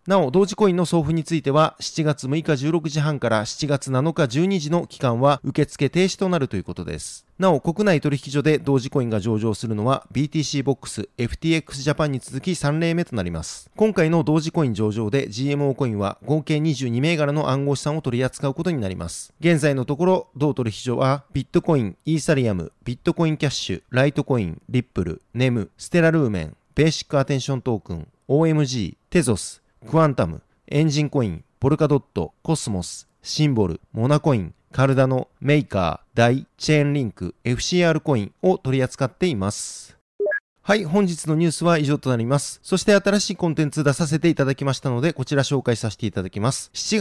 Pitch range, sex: 120-160 Hz, male